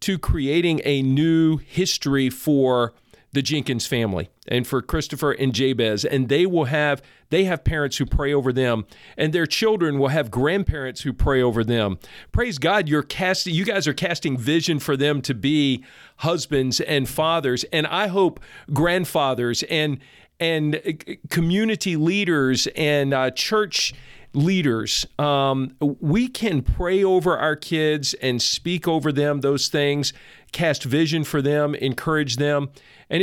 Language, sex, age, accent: English, male, 40-59, American